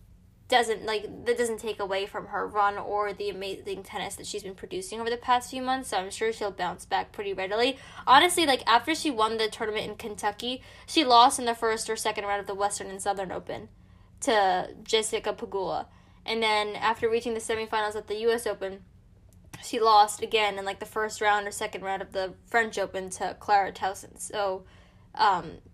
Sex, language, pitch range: female, English, 205-240 Hz